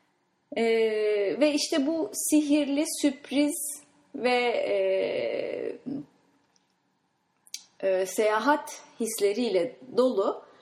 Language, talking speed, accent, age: English, 70 wpm, Turkish, 30-49